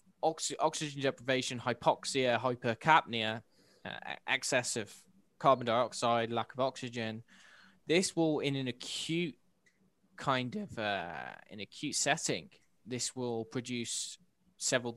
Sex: male